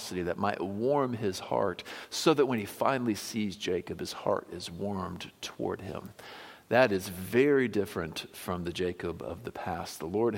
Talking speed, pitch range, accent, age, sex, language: 175 wpm, 95-125 Hz, American, 50-69, male, English